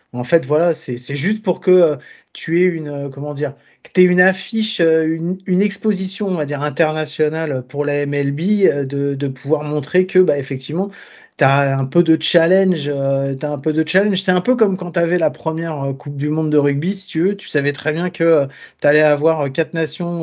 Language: French